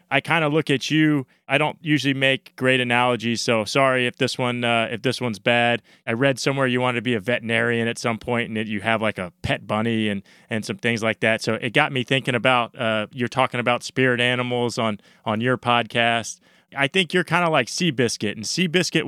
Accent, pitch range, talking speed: American, 110-130 Hz, 230 wpm